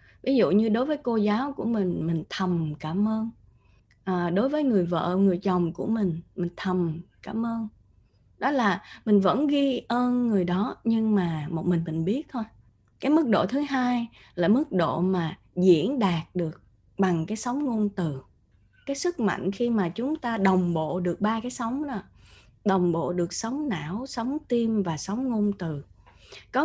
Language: Vietnamese